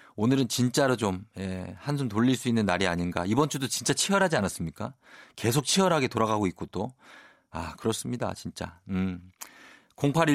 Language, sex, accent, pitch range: Korean, male, native, 100-150 Hz